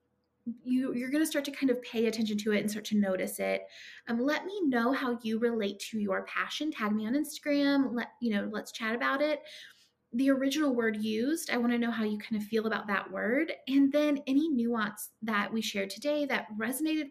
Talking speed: 225 wpm